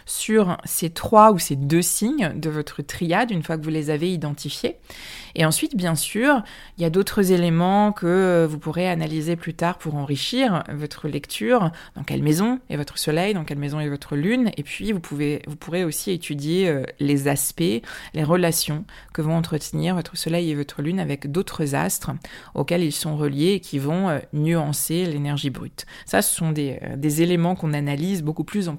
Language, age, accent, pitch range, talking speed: French, 20-39, French, 150-190 Hz, 190 wpm